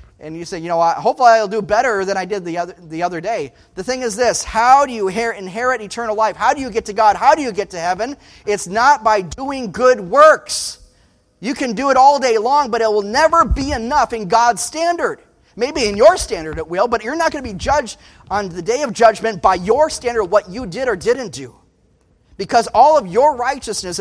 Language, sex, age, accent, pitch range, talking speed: English, male, 30-49, American, 190-270 Hz, 235 wpm